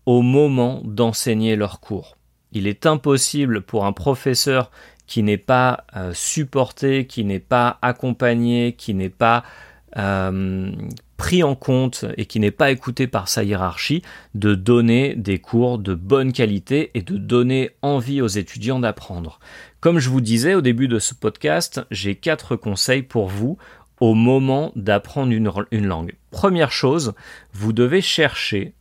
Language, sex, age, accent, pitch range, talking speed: Spanish, male, 40-59, French, 105-130 Hz, 150 wpm